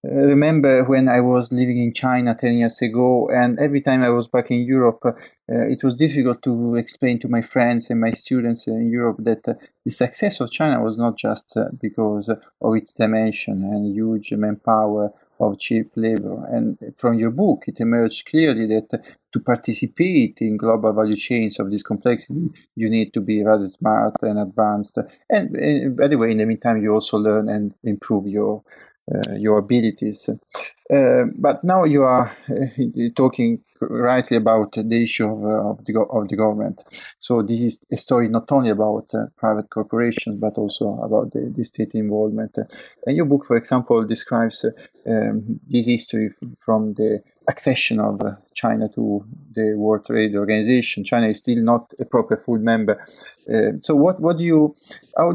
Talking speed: 180 wpm